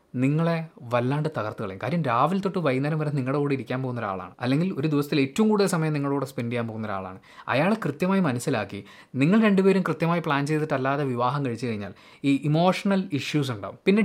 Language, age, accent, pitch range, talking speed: Malayalam, 20-39, native, 125-185 Hz, 180 wpm